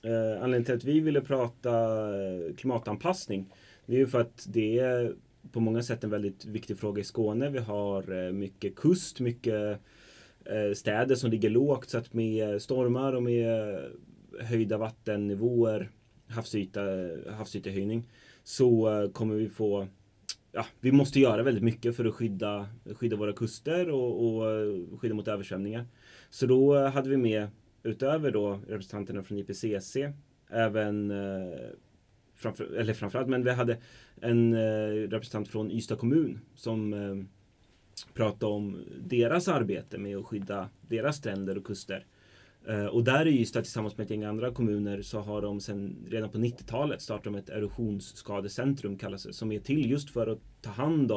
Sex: male